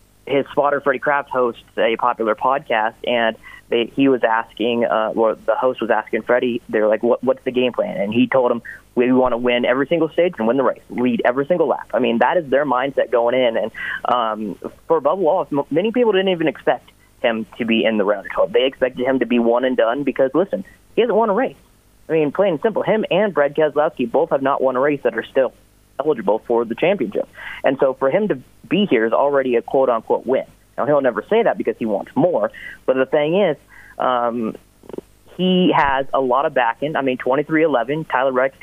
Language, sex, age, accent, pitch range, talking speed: English, male, 30-49, American, 120-160 Hz, 230 wpm